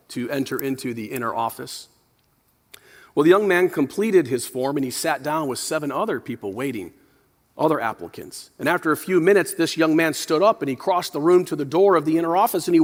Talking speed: 225 wpm